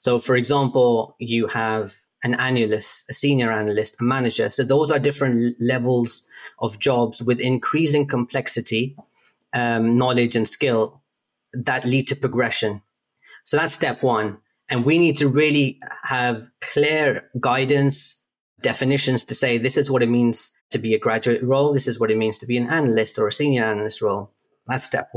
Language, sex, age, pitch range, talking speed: English, male, 30-49, 115-140 Hz, 170 wpm